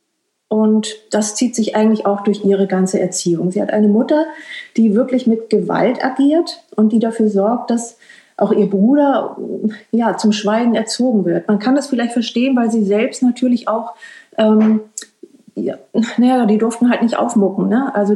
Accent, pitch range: German, 205-245 Hz